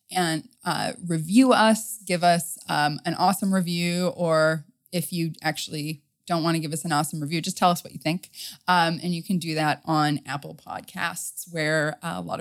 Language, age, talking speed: English, 20-39, 200 wpm